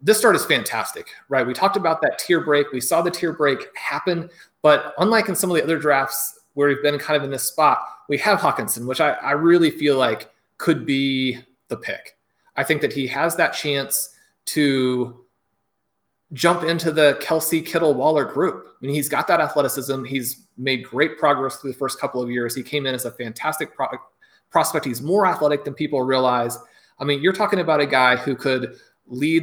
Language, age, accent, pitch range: English, 30-49, American, 130-165 Hz